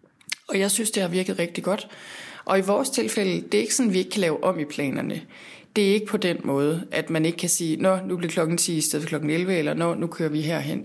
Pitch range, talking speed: 160-200 Hz, 275 wpm